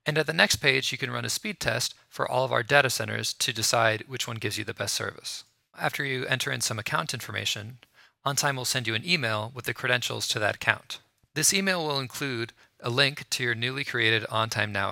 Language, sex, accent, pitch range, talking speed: English, male, American, 110-135 Hz, 230 wpm